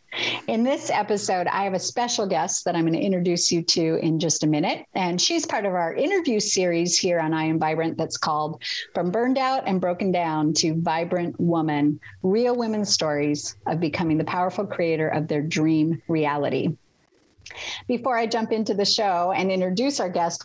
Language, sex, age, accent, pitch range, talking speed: English, female, 50-69, American, 160-210 Hz, 190 wpm